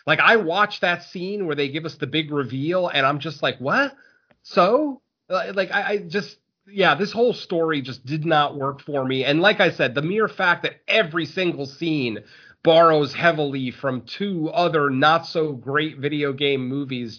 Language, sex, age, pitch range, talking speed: English, male, 30-49, 135-180 Hz, 190 wpm